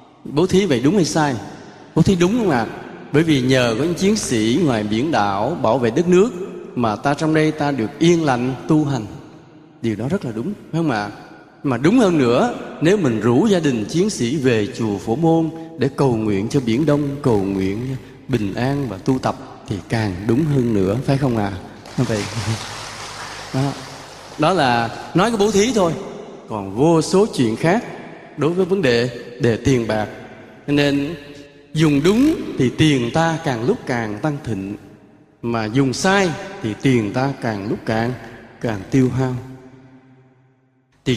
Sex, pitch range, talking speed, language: male, 120-170 Hz, 185 wpm, Vietnamese